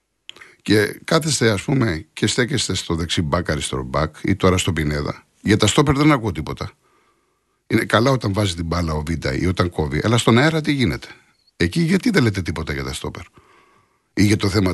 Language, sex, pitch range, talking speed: Greek, male, 90-125 Hz, 200 wpm